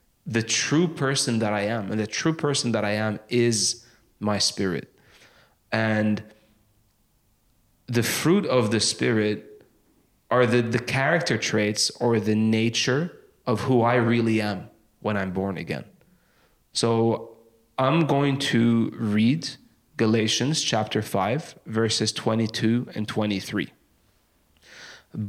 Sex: male